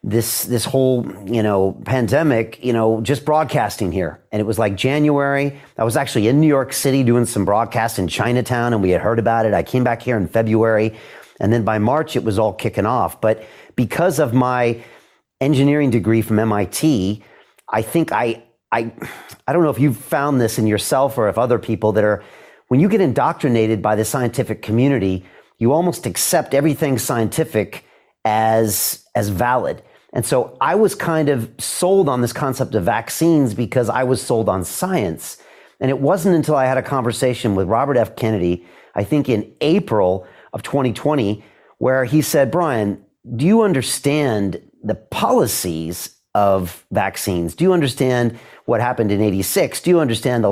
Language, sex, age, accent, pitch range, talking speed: English, male, 40-59, American, 110-140 Hz, 180 wpm